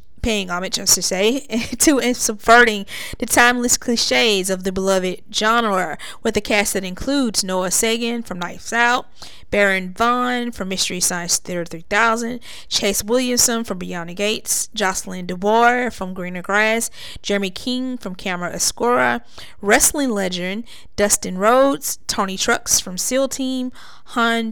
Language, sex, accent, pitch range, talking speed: English, female, American, 185-235 Hz, 140 wpm